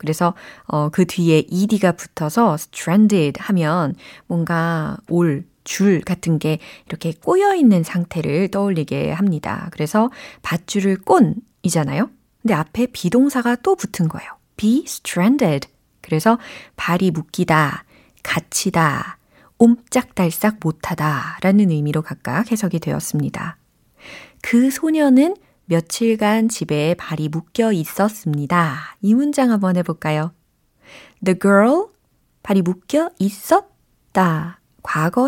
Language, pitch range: Korean, 165-230 Hz